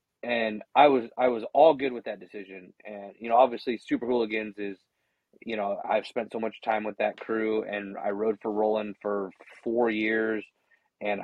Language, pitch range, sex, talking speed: English, 105-135 Hz, male, 190 wpm